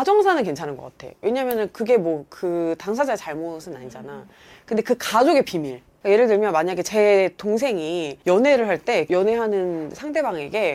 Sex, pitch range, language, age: female, 160-245 Hz, Korean, 30-49